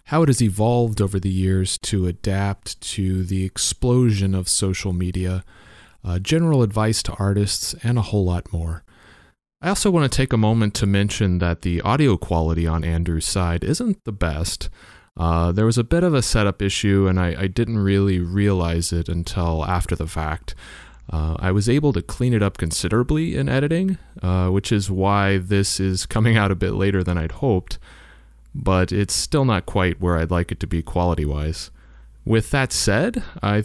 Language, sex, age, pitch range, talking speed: English, male, 30-49, 85-110 Hz, 185 wpm